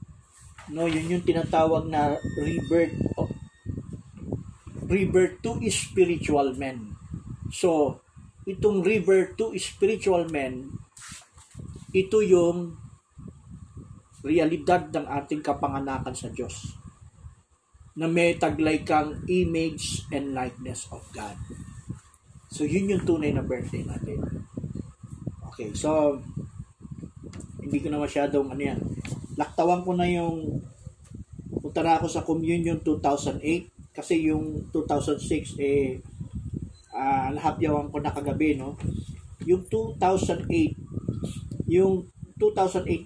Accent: native